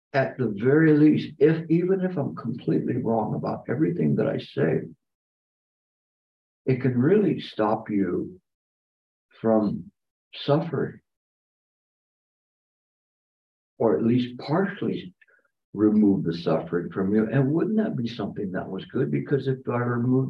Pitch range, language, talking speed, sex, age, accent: 110-145 Hz, English, 125 wpm, male, 60-79, American